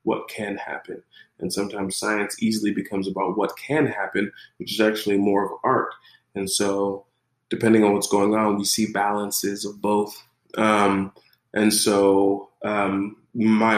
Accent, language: American, English